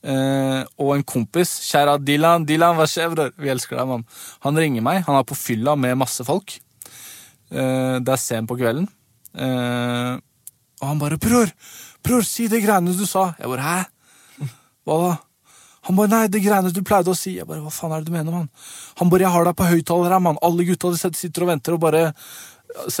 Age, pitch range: 20-39, 130-180 Hz